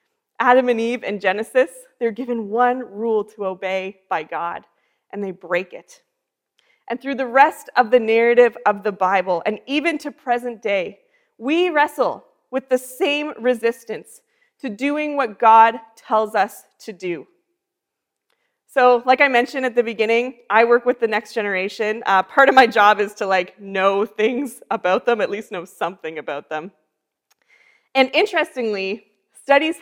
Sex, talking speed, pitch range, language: female, 160 wpm, 220-295 Hz, English